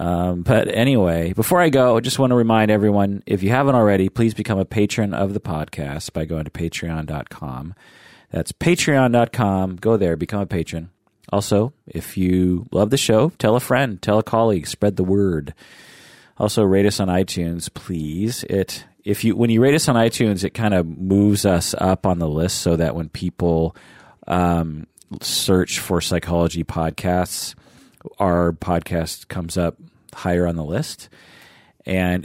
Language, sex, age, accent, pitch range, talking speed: English, male, 30-49, American, 85-115 Hz, 170 wpm